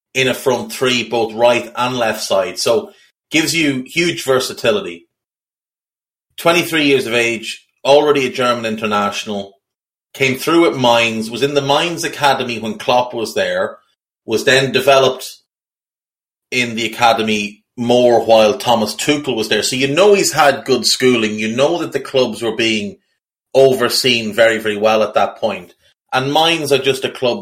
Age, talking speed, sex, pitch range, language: 30-49, 160 wpm, male, 110-135 Hz, English